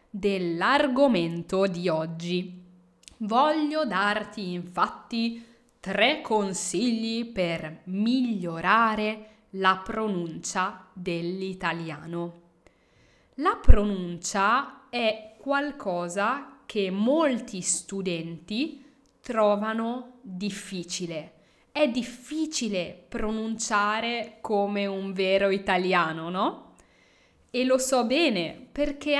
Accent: native